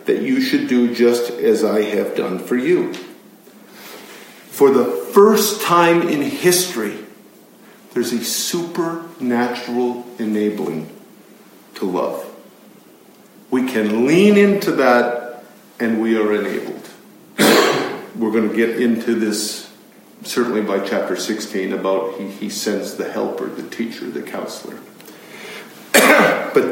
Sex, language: male, English